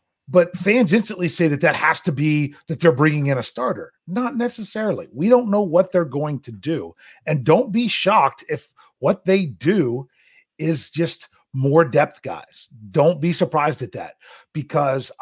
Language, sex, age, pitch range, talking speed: English, male, 40-59, 145-185 Hz, 175 wpm